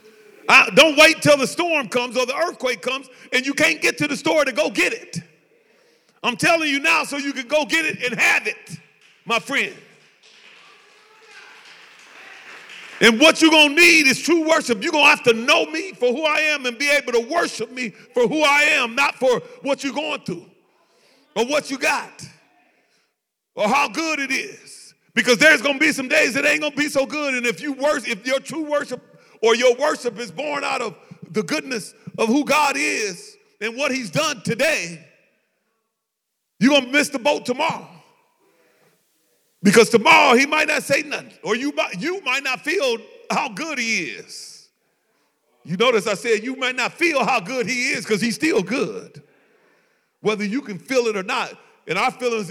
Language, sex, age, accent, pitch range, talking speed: English, male, 40-59, American, 230-315 Hz, 190 wpm